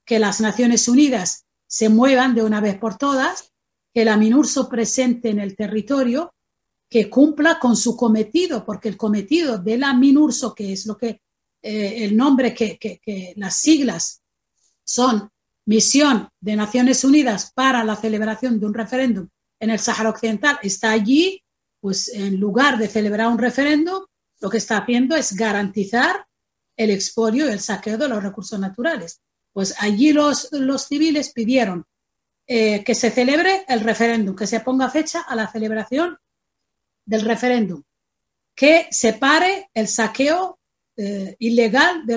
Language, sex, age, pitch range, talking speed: Spanish, female, 40-59, 215-275 Hz, 155 wpm